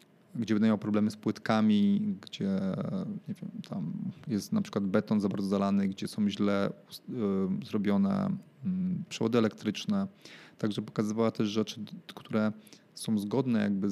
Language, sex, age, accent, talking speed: Polish, male, 30-49, native, 140 wpm